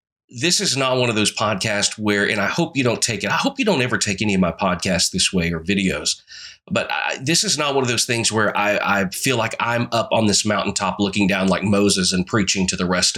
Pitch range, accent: 95-115 Hz, American